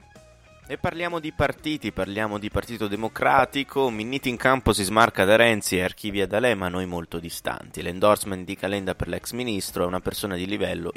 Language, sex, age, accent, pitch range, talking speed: Italian, male, 20-39, native, 90-110 Hz, 175 wpm